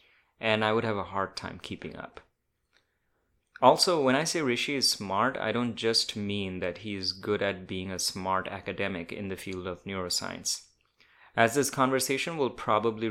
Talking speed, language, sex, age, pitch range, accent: 180 wpm, English, male, 30-49, 100-120 Hz, Indian